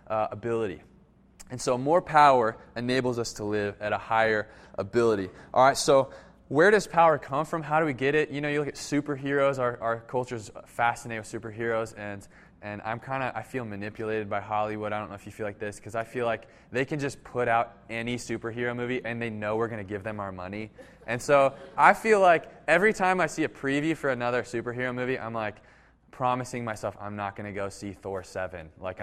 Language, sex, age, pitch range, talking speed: English, male, 20-39, 110-135 Hz, 225 wpm